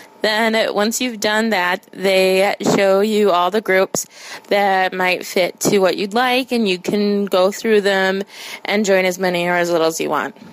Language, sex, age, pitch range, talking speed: English, female, 20-39, 185-230 Hz, 195 wpm